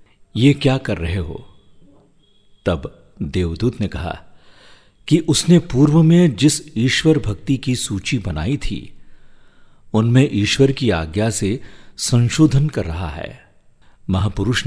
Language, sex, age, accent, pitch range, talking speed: Hindi, male, 50-69, native, 90-120 Hz, 125 wpm